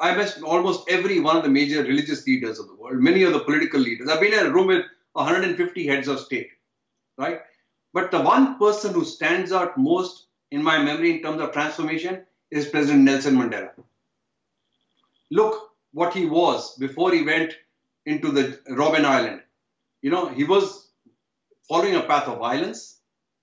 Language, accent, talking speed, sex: English, Indian, 175 wpm, male